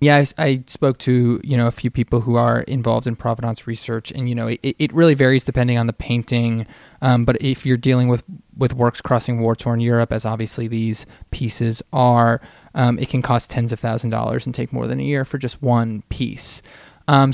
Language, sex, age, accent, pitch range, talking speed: English, male, 20-39, American, 115-135 Hz, 215 wpm